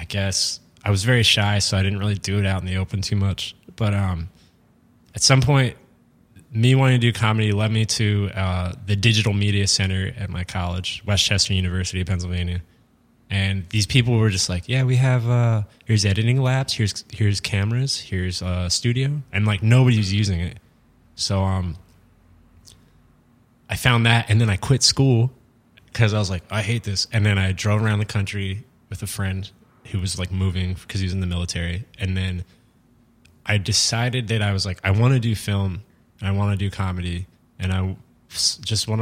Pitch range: 90-110 Hz